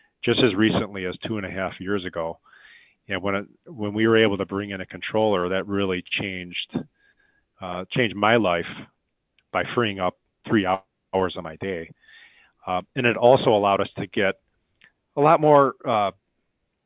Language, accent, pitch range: English, American, 95-120 Hz